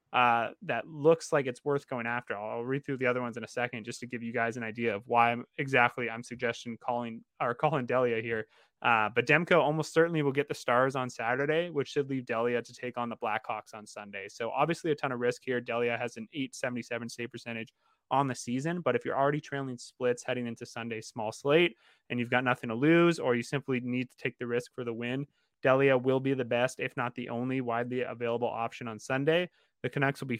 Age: 20-39